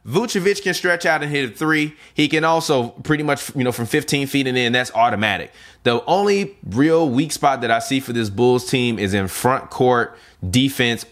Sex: male